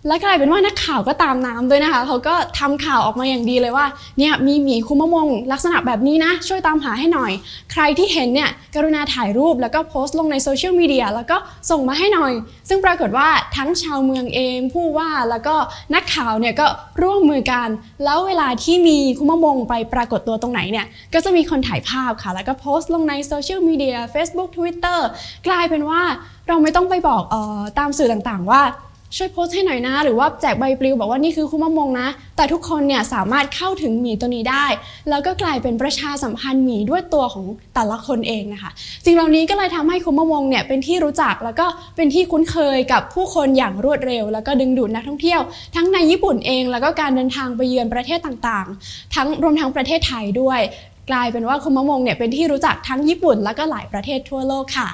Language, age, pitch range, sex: English, 10-29, 255-325 Hz, female